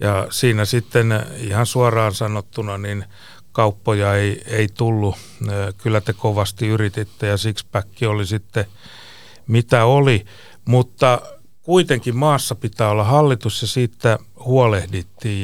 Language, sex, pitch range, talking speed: Finnish, male, 100-120 Hz, 120 wpm